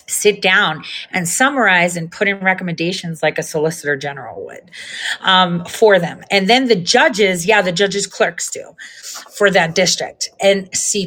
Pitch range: 175-235 Hz